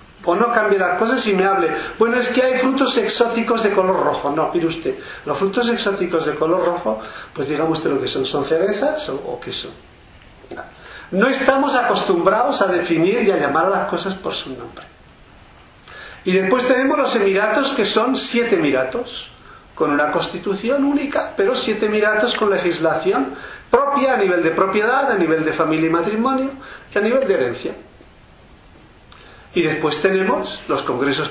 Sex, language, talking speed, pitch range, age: male, English, 175 wpm, 180-260 Hz, 50-69